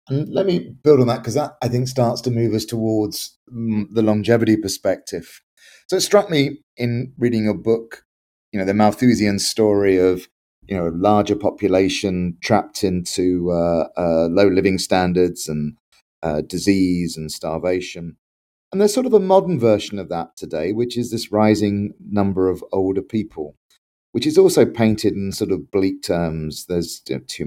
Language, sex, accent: English, male, British